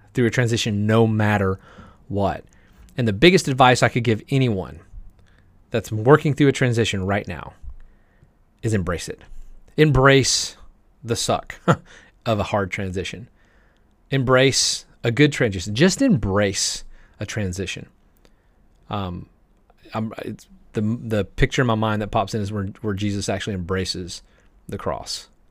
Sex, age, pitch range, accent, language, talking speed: male, 30-49, 100-125 Hz, American, English, 140 wpm